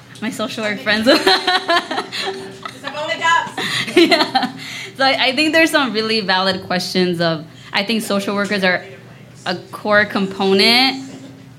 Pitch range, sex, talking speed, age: 175-215 Hz, female, 120 wpm, 20-39